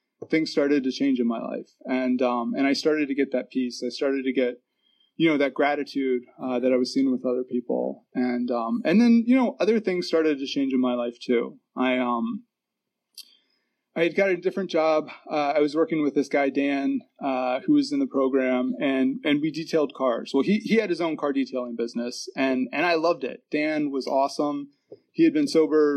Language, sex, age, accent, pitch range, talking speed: English, male, 30-49, American, 130-175 Hz, 220 wpm